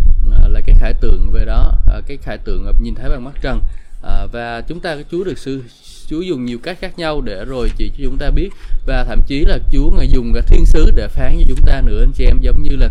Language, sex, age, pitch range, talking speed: Vietnamese, male, 20-39, 110-150 Hz, 270 wpm